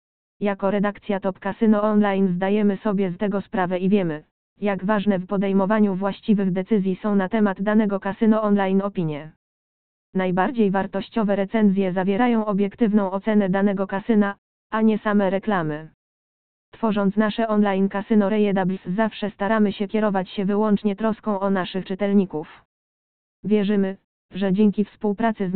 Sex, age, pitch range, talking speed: female, 20-39, 195-215 Hz, 135 wpm